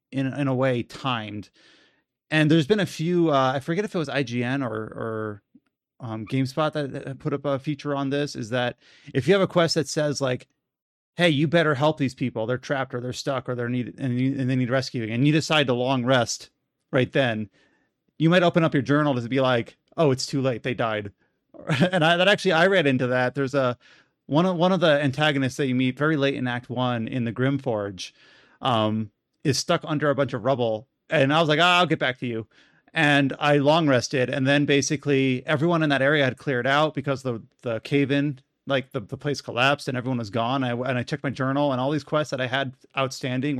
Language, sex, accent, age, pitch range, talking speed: English, male, American, 30-49, 125-150 Hz, 230 wpm